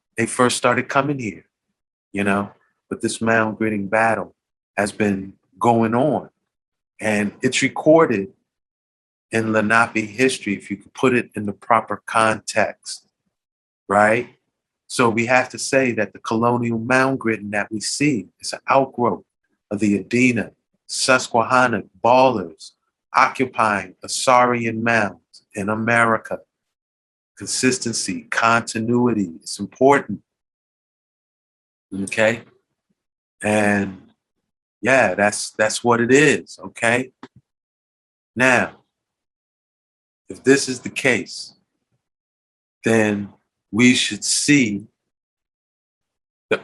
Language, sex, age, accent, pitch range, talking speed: English, male, 50-69, American, 100-125 Hz, 105 wpm